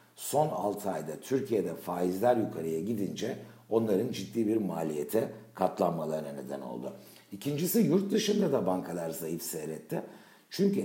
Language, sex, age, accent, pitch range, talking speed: Turkish, male, 60-79, native, 85-115 Hz, 120 wpm